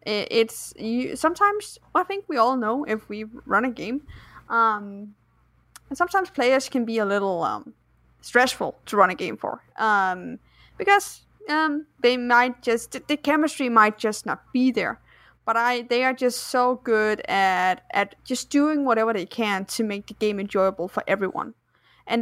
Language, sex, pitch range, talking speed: English, female, 210-265 Hz, 175 wpm